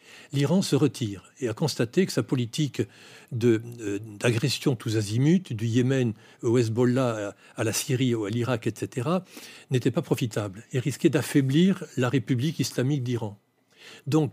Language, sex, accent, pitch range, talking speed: French, male, French, 120-155 Hz, 155 wpm